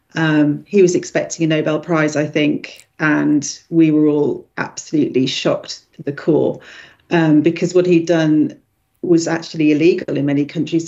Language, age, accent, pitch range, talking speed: English, 40-59, British, 155-175 Hz, 160 wpm